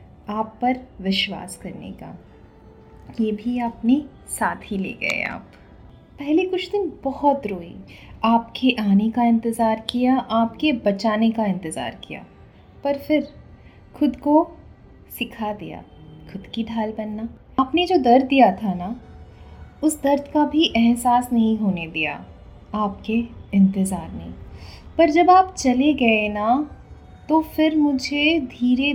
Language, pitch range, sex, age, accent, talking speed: Hindi, 220-275 Hz, female, 20-39, native, 135 wpm